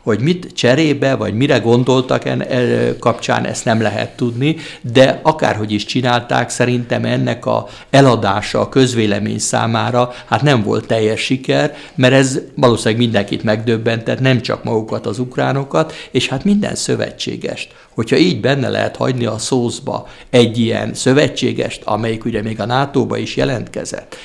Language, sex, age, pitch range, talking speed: Hungarian, male, 60-79, 115-135 Hz, 145 wpm